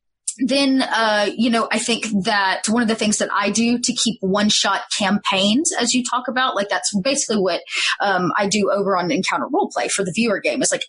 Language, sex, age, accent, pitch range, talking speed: English, female, 20-39, American, 200-255 Hz, 220 wpm